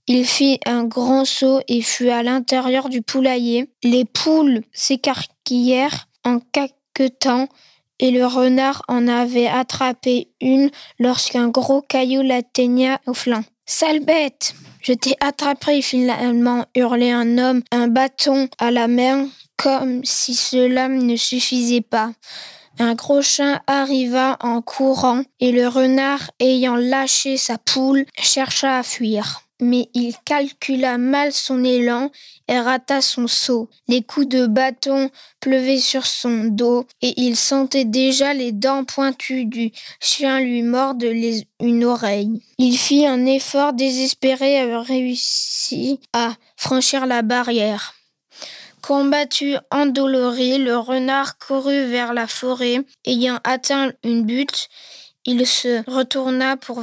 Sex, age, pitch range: female, 20-39, 245-270 Hz